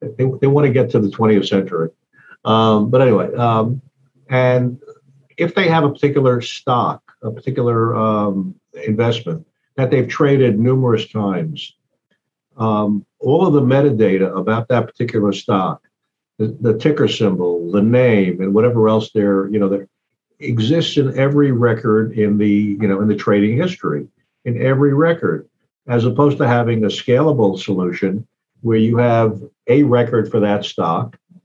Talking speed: 155 wpm